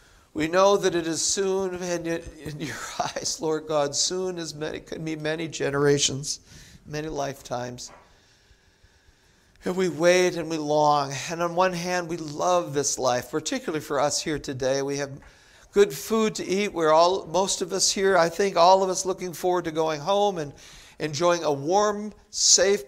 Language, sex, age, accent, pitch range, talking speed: English, male, 60-79, American, 145-180 Hz, 175 wpm